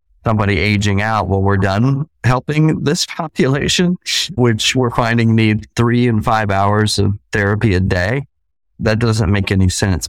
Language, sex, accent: English, male, American